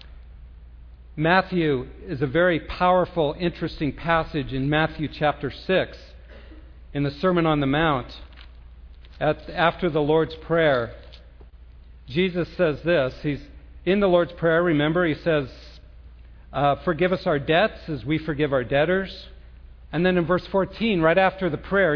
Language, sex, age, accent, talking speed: English, male, 50-69, American, 135 wpm